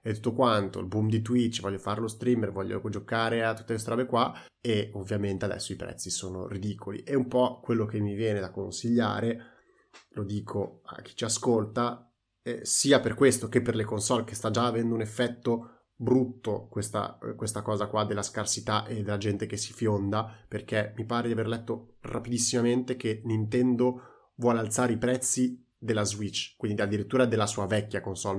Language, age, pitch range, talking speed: Italian, 20-39, 105-125 Hz, 185 wpm